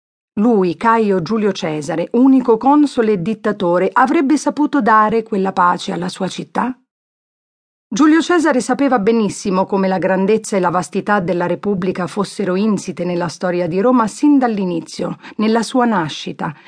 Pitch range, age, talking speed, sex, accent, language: 180-230 Hz, 40-59, 140 wpm, female, native, Italian